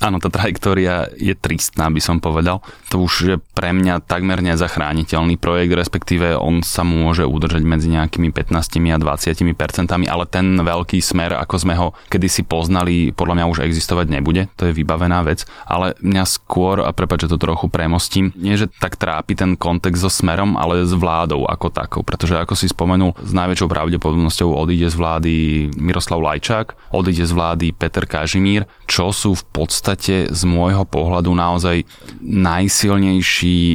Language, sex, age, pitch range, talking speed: Slovak, male, 20-39, 85-95 Hz, 165 wpm